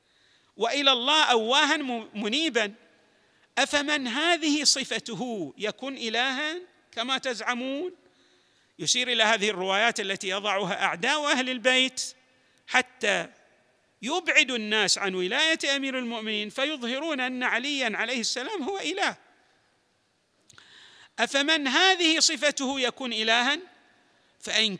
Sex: male